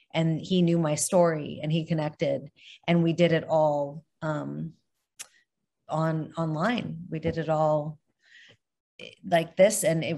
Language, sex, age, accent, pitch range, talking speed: English, female, 30-49, American, 155-180 Hz, 140 wpm